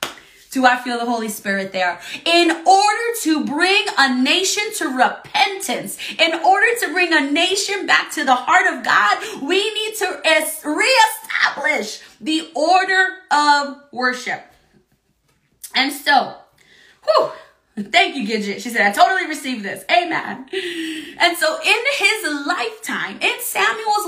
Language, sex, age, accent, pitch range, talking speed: English, female, 30-49, American, 240-370 Hz, 135 wpm